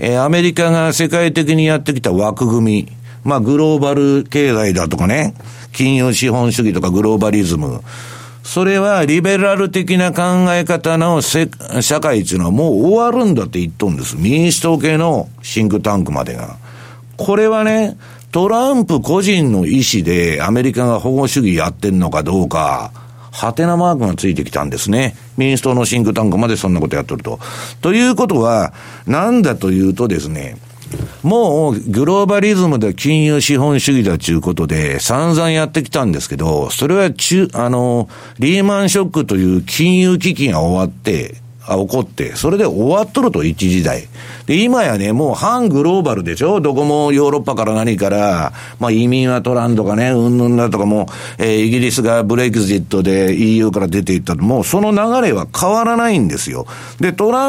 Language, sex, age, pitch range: Japanese, male, 60-79, 110-170 Hz